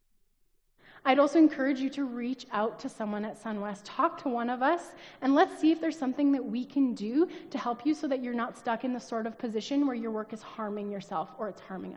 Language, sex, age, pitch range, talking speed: English, female, 30-49, 225-285 Hz, 240 wpm